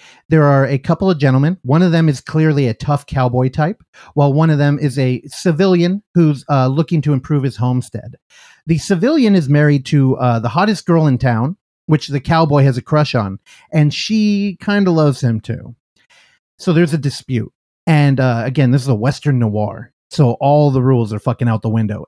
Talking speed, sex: 205 wpm, male